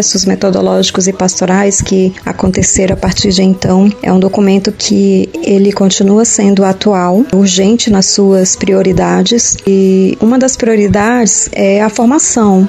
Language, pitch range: Portuguese, 190-215 Hz